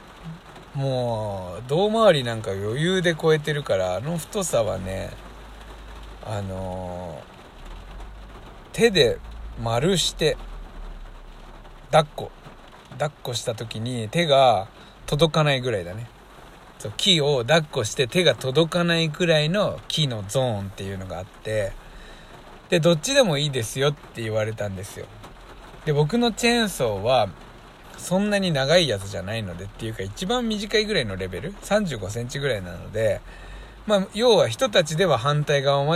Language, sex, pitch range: Japanese, male, 110-175 Hz